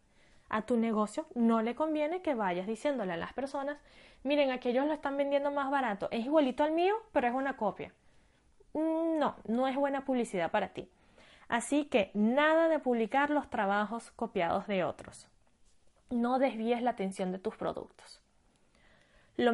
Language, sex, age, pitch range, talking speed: Spanish, female, 20-39, 210-285 Hz, 160 wpm